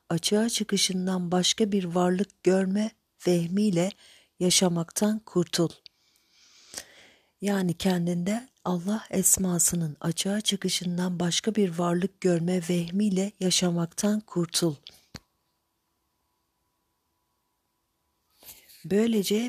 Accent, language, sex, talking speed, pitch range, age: native, Turkish, female, 70 wpm, 175-205 Hz, 50-69